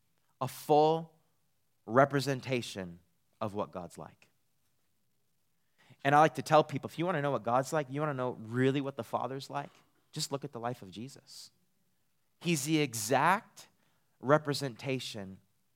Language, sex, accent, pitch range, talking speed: English, male, American, 110-140 Hz, 155 wpm